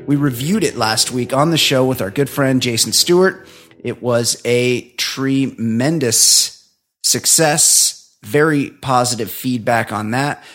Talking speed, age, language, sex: 135 wpm, 30-49, English, male